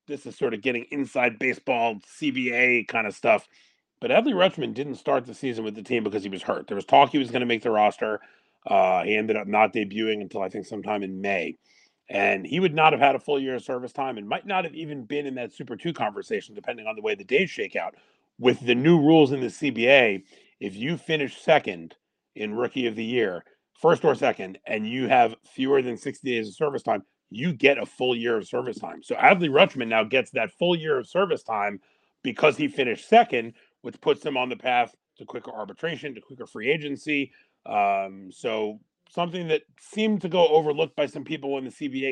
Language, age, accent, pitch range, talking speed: English, 40-59, American, 115-150 Hz, 225 wpm